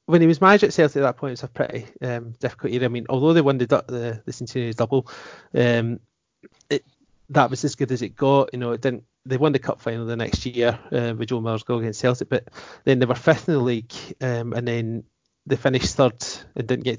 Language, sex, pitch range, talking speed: English, male, 115-130 Hz, 255 wpm